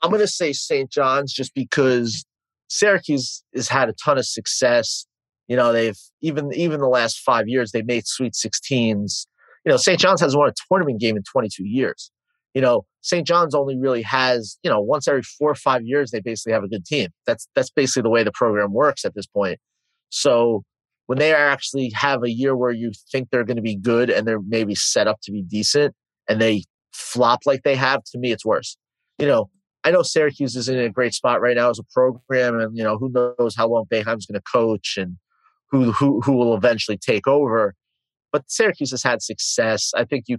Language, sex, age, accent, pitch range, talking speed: English, male, 30-49, American, 110-135 Hz, 220 wpm